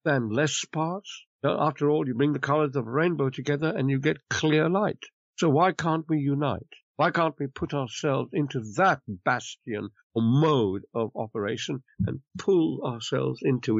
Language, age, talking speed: English, 60-79, 170 wpm